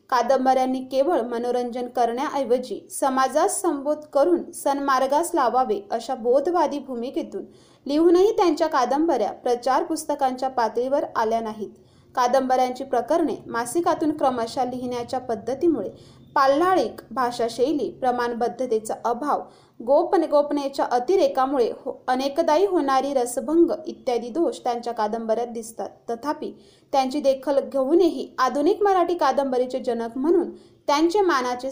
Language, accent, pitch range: Marathi, native, 245-315 Hz